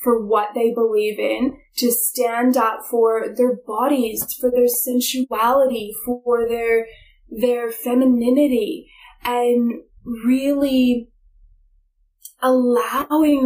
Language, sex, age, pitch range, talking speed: English, female, 10-29, 225-255 Hz, 95 wpm